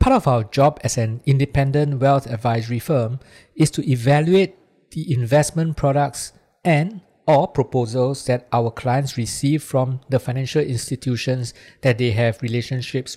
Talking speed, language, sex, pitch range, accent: 140 wpm, English, male, 125-150 Hz, Malaysian